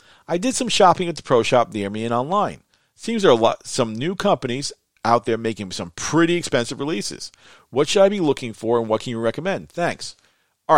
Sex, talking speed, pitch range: male, 210 wpm, 110-150 Hz